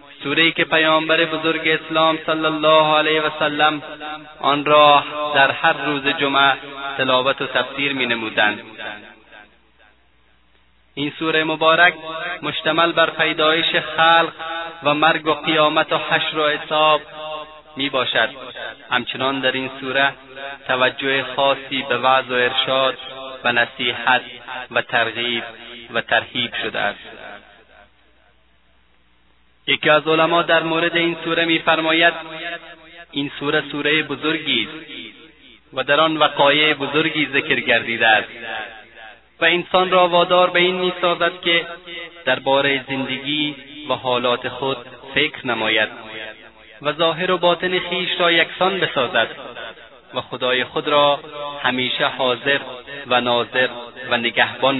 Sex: male